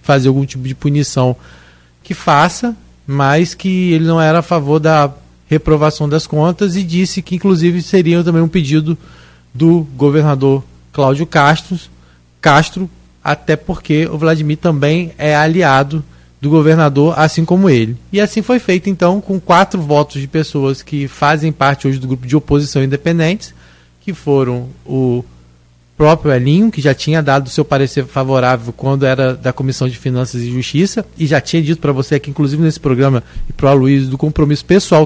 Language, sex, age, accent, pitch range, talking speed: Portuguese, male, 20-39, Brazilian, 130-165 Hz, 170 wpm